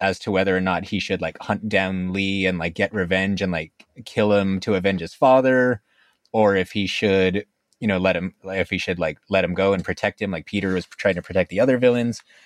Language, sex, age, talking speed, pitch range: English, male, 20-39, 240 wpm, 95-110 Hz